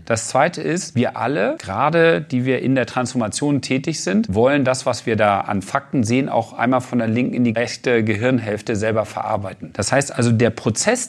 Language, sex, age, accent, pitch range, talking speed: German, male, 40-59, German, 120-165 Hz, 200 wpm